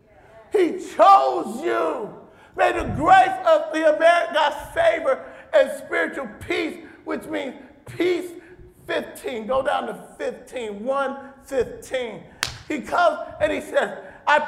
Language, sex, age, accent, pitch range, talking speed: English, male, 50-69, American, 265-330 Hz, 125 wpm